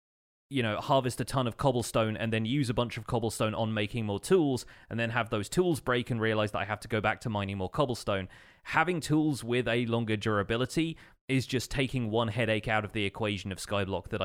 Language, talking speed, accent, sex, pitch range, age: English, 225 wpm, British, male, 100-120 Hz, 30-49